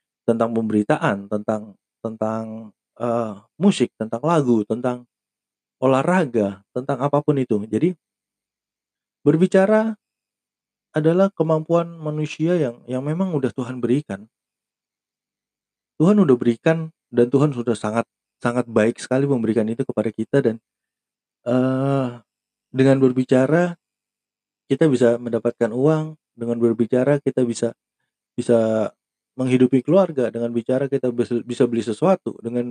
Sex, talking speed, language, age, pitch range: male, 110 wpm, Indonesian, 30-49, 115-145 Hz